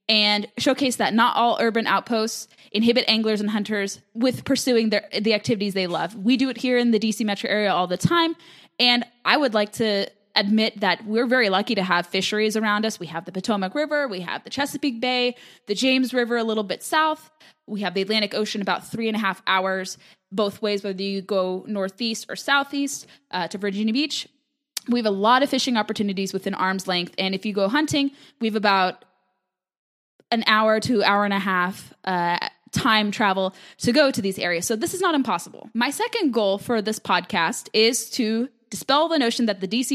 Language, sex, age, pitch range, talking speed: English, female, 10-29, 195-245 Hz, 205 wpm